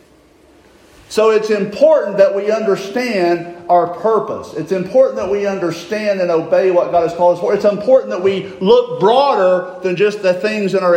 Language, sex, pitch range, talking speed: English, male, 180-250 Hz, 180 wpm